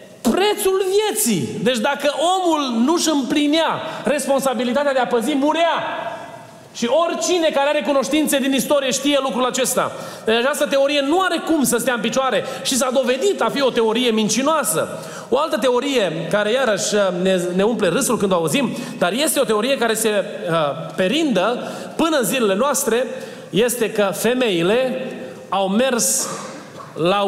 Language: Romanian